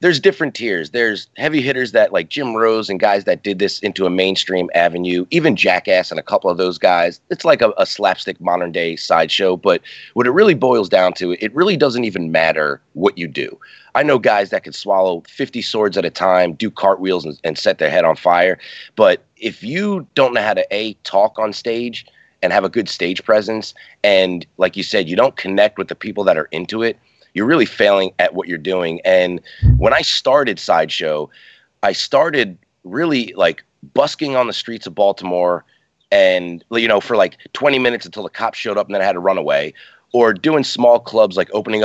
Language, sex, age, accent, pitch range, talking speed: English, male, 30-49, American, 90-125 Hz, 210 wpm